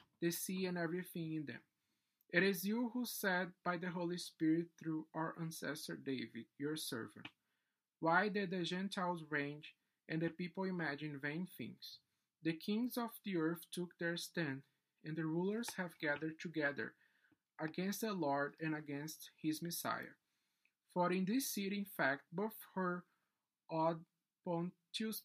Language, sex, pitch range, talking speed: English, male, 160-190 Hz, 150 wpm